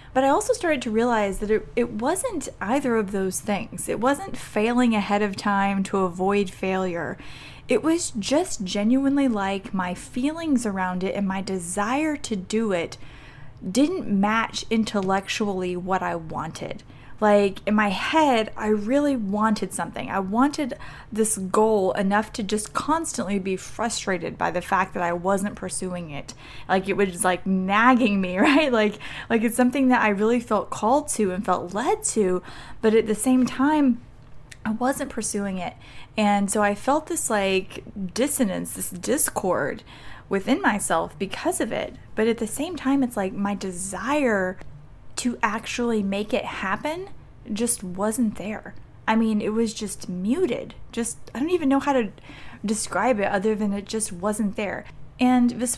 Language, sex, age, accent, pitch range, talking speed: English, female, 20-39, American, 190-250 Hz, 165 wpm